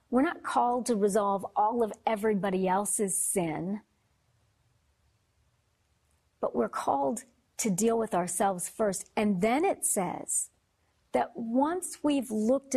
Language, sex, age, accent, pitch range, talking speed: English, female, 50-69, American, 190-240 Hz, 120 wpm